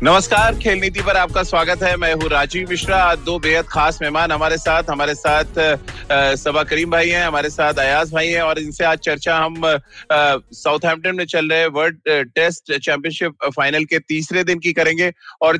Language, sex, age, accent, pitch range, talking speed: Hindi, male, 30-49, native, 155-170 Hz, 125 wpm